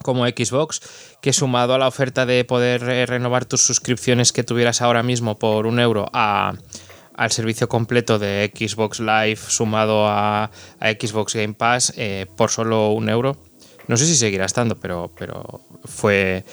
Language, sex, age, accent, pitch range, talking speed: Spanish, male, 20-39, Spanish, 110-130 Hz, 160 wpm